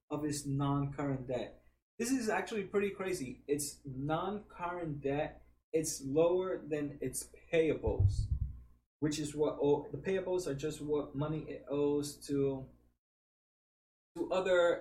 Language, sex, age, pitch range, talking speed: English, male, 20-39, 135-165 Hz, 130 wpm